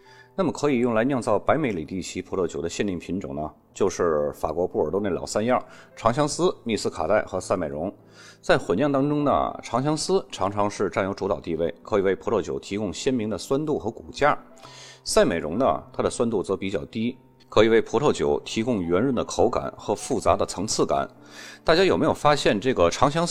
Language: Chinese